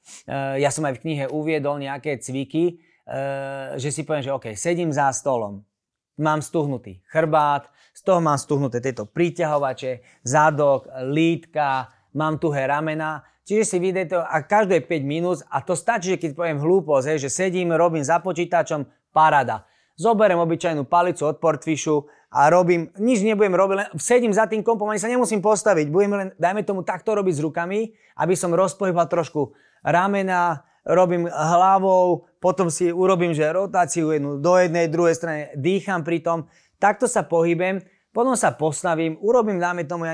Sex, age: male, 30-49